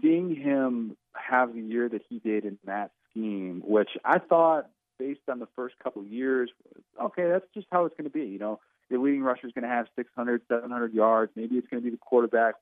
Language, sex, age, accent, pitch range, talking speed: English, male, 40-59, American, 105-135 Hz, 230 wpm